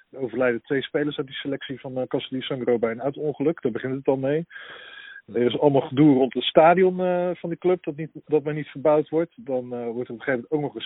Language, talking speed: Dutch, 250 wpm